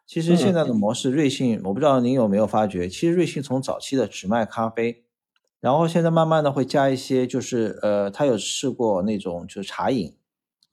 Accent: native